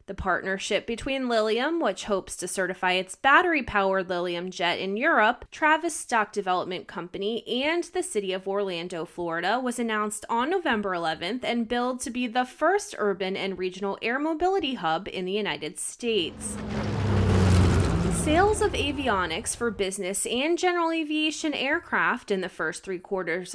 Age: 20-39